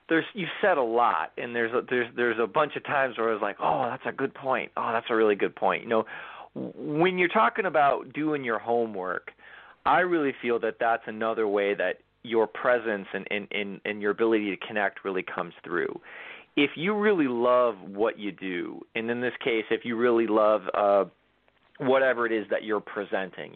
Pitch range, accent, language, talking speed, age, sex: 110-145 Hz, American, English, 205 wpm, 40-59, male